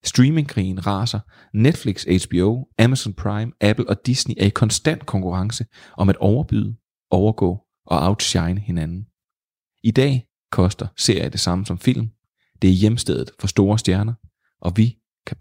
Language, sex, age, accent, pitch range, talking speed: Danish, male, 30-49, native, 95-115 Hz, 145 wpm